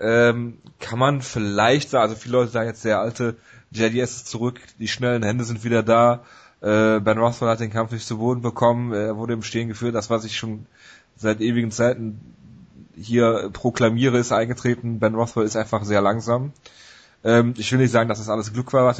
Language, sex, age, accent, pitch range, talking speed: German, male, 30-49, German, 110-125 Hz, 200 wpm